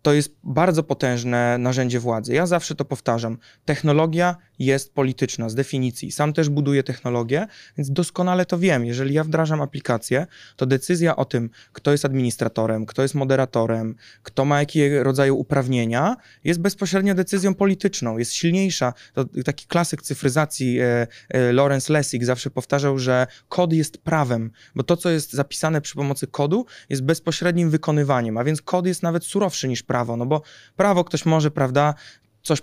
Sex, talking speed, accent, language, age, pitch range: male, 160 wpm, native, Polish, 20-39, 125-160 Hz